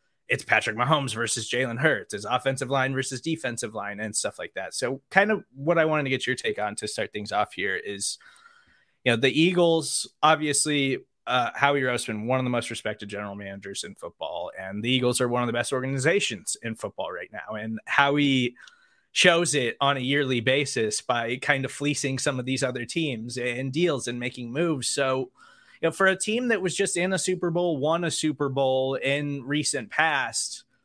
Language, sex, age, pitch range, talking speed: English, male, 20-39, 130-165 Hz, 205 wpm